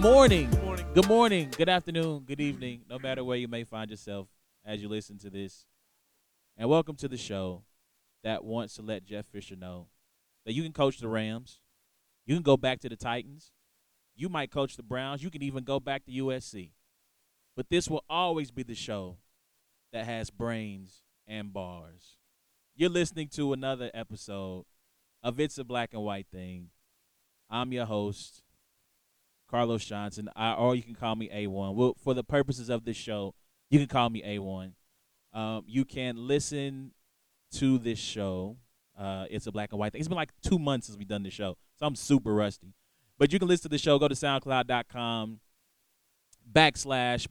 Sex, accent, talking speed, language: male, American, 185 wpm, English